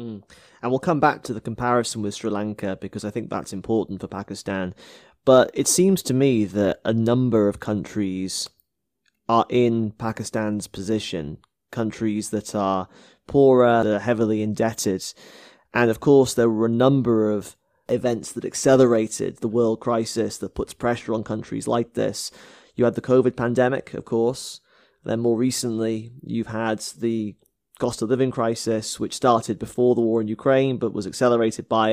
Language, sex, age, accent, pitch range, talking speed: English, male, 20-39, British, 110-120 Hz, 165 wpm